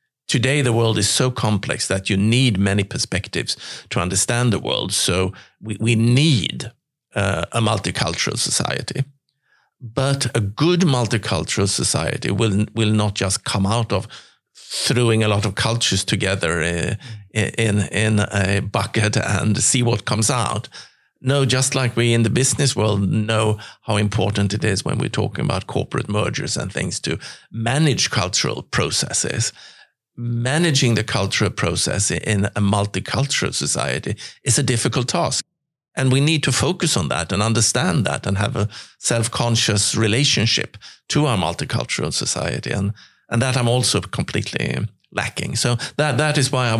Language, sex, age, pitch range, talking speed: English, male, 50-69, 105-125 Hz, 155 wpm